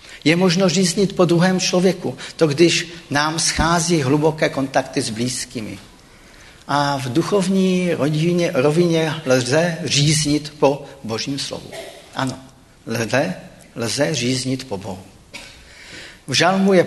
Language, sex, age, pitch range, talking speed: Czech, male, 50-69, 120-155 Hz, 115 wpm